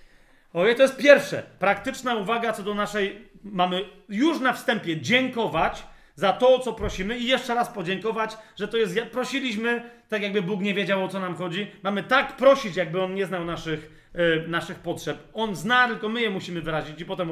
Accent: native